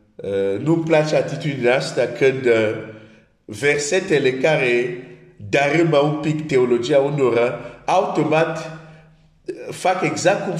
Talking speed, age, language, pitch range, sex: 110 wpm, 50-69, Romanian, 130-165 Hz, male